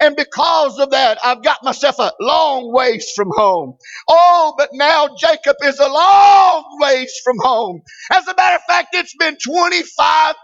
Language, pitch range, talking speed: English, 270-325 Hz, 175 wpm